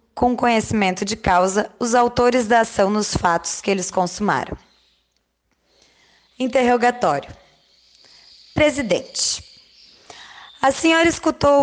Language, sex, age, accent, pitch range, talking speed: Portuguese, female, 20-39, Brazilian, 210-265 Hz, 95 wpm